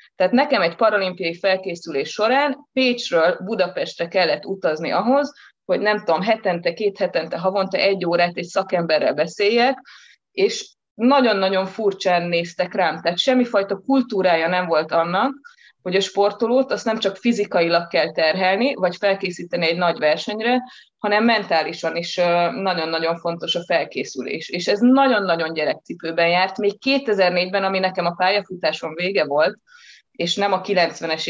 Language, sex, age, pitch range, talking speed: Hungarian, female, 20-39, 170-225 Hz, 140 wpm